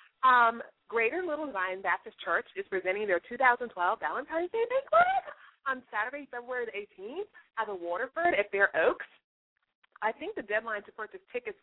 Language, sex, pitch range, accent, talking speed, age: English, female, 195-290 Hz, American, 160 wpm, 30-49